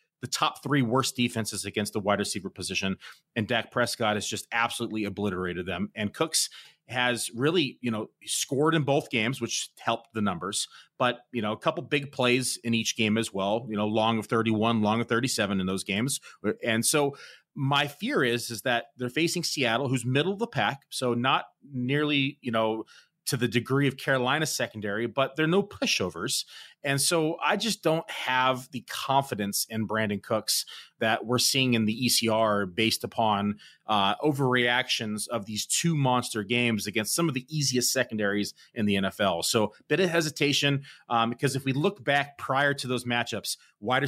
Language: English